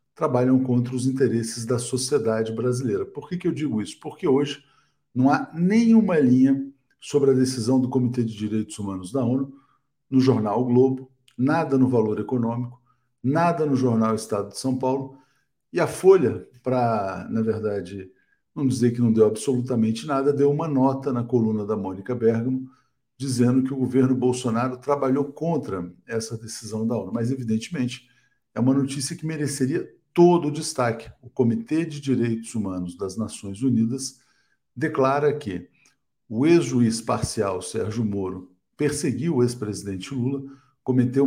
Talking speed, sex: 155 wpm, male